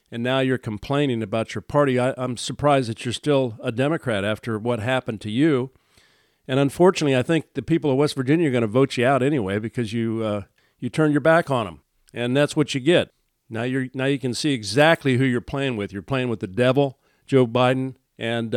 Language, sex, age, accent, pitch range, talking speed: English, male, 50-69, American, 115-150 Hz, 225 wpm